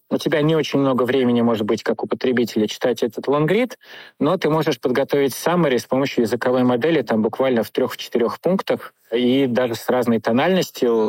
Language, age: Russian, 20-39